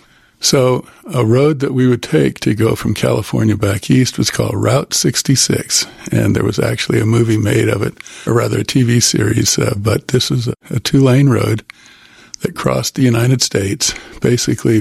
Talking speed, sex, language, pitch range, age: 180 wpm, male, English, 105-125 Hz, 50-69